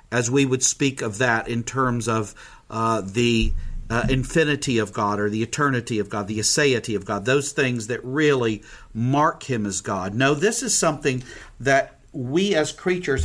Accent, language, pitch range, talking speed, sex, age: American, English, 120-155 Hz, 180 wpm, male, 50-69